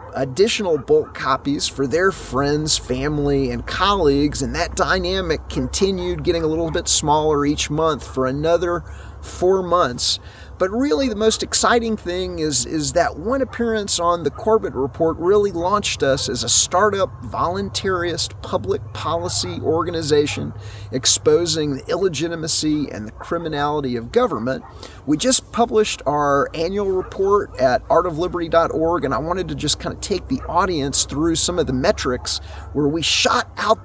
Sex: male